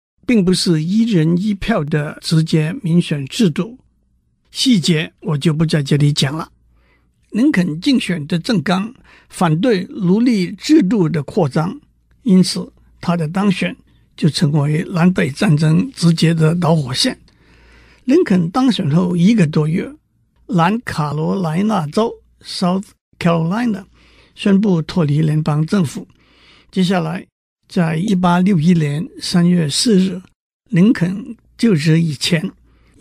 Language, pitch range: Chinese, 160-205 Hz